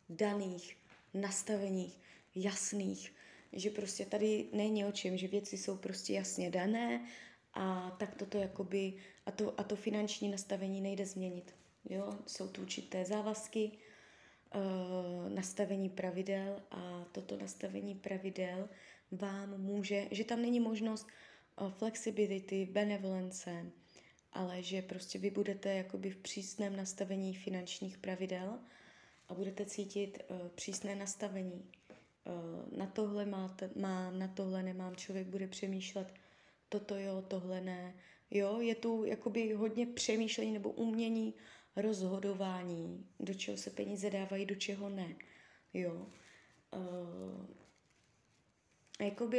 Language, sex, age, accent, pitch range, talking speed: Czech, female, 20-39, native, 185-210 Hz, 115 wpm